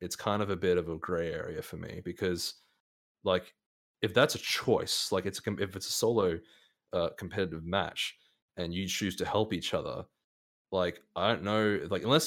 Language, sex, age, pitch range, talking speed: English, male, 20-39, 85-95 Hz, 190 wpm